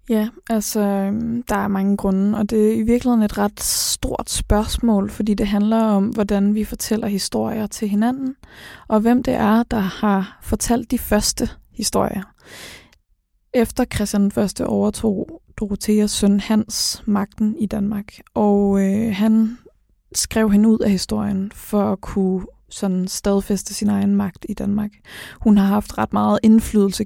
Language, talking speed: Danish, 155 wpm